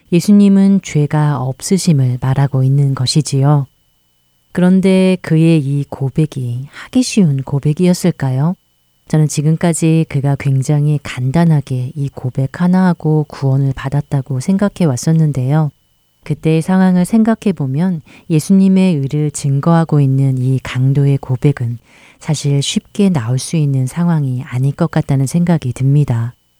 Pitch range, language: 130-160 Hz, Korean